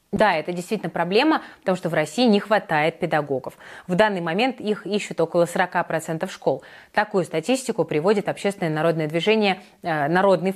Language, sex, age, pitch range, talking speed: Russian, female, 20-39, 170-220 Hz, 155 wpm